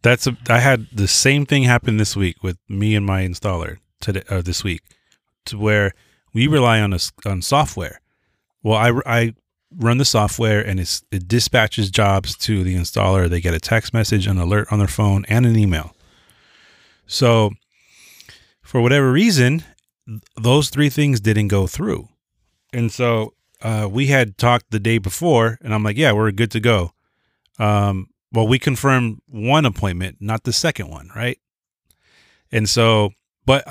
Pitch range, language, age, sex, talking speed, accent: 95-120 Hz, English, 30-49, male, 165 wpm, American